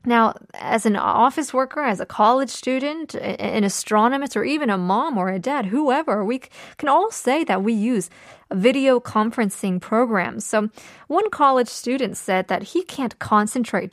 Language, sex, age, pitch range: Korean, female, 20-39, 210-285 Hz